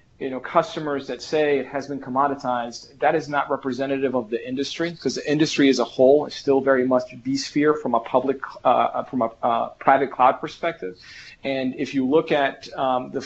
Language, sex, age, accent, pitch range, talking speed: English, male, 40-59, American, 120-140 Hz, 195 wpm